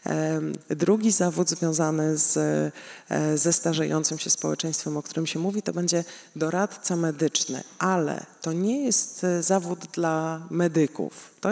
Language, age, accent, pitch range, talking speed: Polish, 20-39, native, 150-175 Hz, 120 wpm